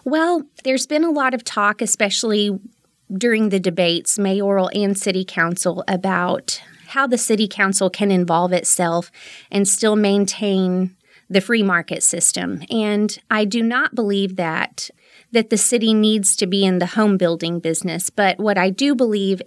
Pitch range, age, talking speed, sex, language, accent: 185-225 Hz, 30-49, 160 wpm, female, English, American